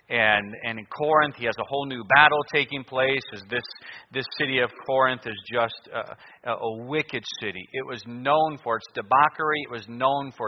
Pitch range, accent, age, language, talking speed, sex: 120-150 Hz, American, 40-59, English, 195 wpm, male